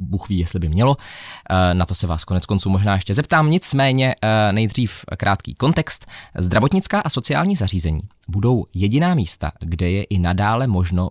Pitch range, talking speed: 85-125 Hz, 155 wpm